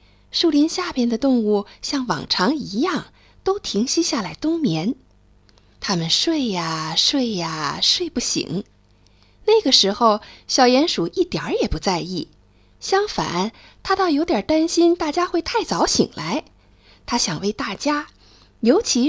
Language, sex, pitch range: Chinese, female, 215-345 Hz